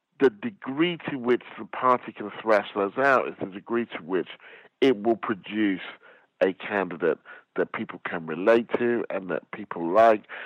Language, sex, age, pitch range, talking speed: English, male, 50-69, 115-150 Hz, 165 wpm